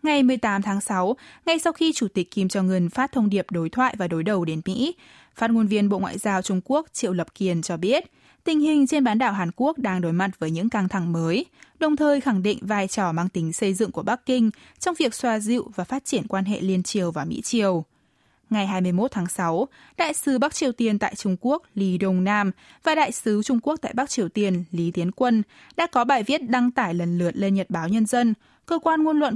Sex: female